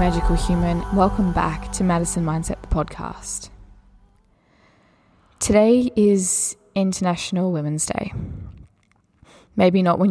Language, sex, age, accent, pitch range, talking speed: English, female, 10-29, Australian, 160-195 Hz, 100 wpm